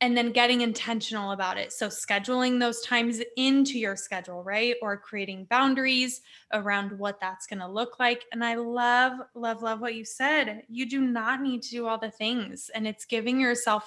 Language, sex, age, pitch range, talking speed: English, female, 20-39, 220-270 Hz, 195 wpm